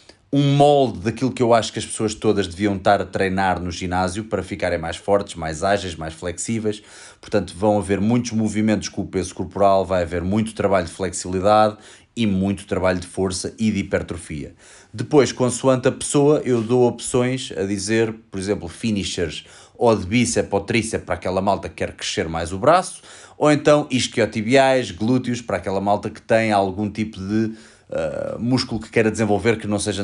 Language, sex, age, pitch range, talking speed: Portuguese, male, 20-39, 95-115 Hz, 185 wpm